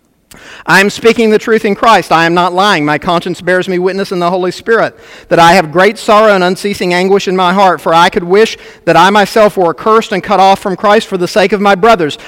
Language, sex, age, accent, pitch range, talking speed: English, male, 50-69, American, 195-250 Hz, 250 wpm